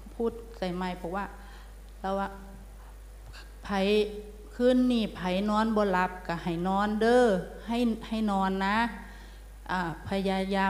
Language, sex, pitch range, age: Thai, female, 185-225 Hz, 30-49